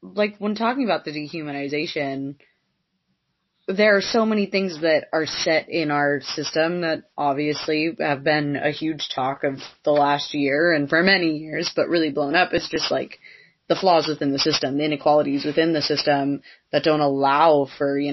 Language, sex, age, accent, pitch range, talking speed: English, female, 20-39, American, 145-170 Hz, 180 wpm